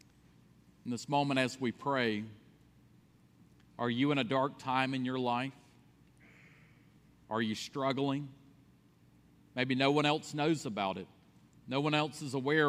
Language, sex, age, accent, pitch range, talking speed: English, male, 40-59, American, 120-145 Hz, 140 wpm